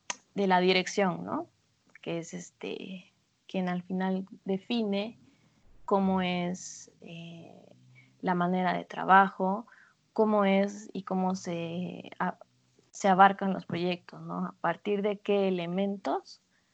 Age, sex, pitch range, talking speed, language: 20-39, female, 180-205 Hz, 120 wpm, Spanish